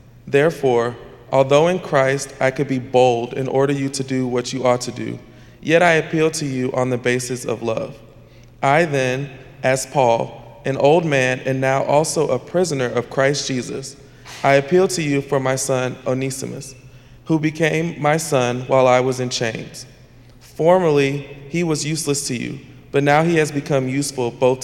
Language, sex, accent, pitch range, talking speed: English, male, American, 125-145 Hz, 180 wpm